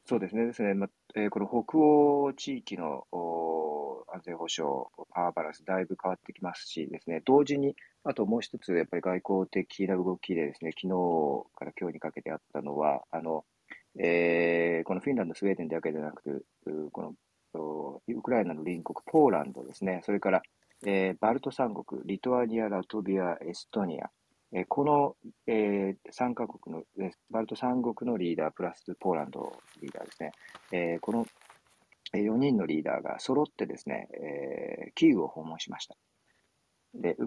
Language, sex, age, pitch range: Japanese, male, 40-59, 85-115 Hz